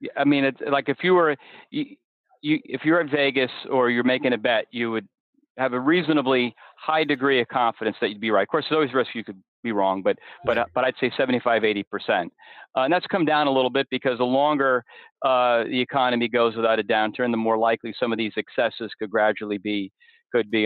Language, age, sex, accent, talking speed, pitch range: English, 40-59, male, American, 225 wpm, 115-140 Hz